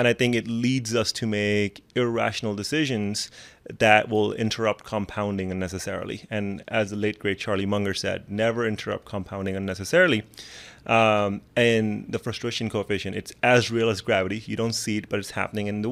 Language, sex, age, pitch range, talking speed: English, male, 30-49, 100-115 Hz, 175 wpm